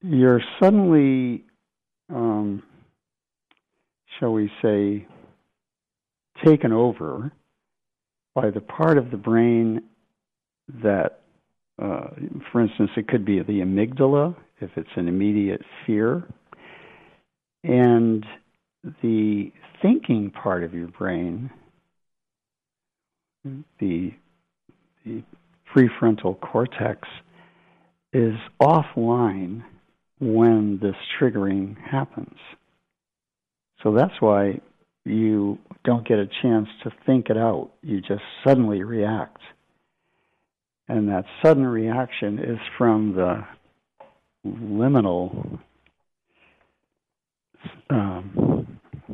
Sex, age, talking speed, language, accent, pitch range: male, 60-79, 85 wpm, English, American, 100-130 Hz